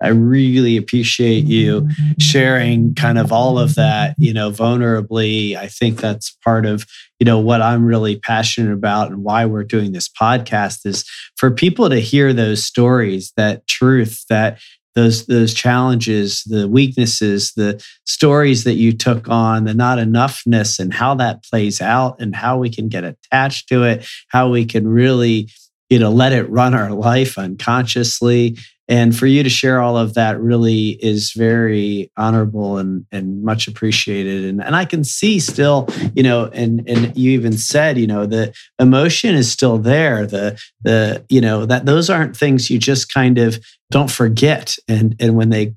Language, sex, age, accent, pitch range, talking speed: English, male, 40-59, American, 110-130 Hz, 175 wpm